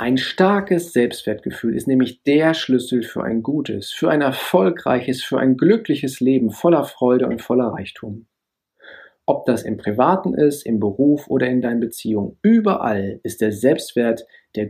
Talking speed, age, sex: 155 wpm, 40-59, male